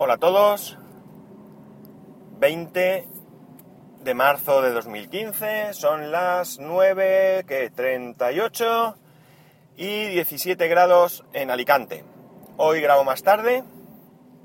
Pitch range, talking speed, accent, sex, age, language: 115-180 Hz, 90 wpm, Spanish, male, 30-49, Spanish